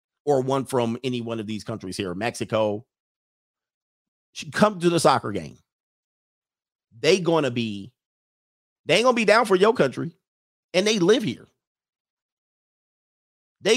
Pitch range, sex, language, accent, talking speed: 115-170 Hz, male, English, American, 145 wpm